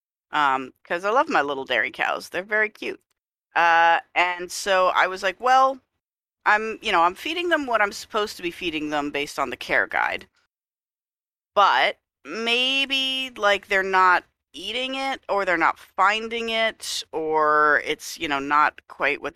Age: 40-59